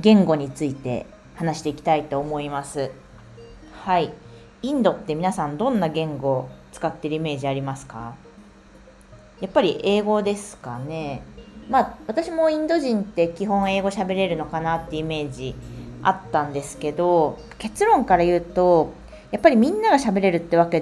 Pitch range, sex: 150-215 Hz, female